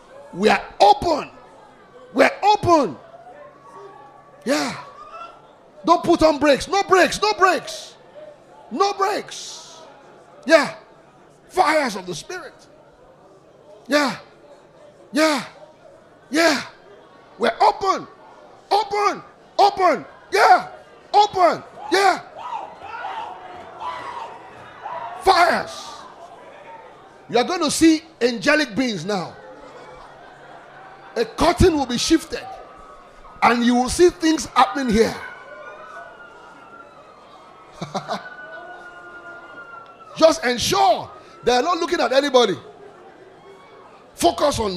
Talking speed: 85 wpm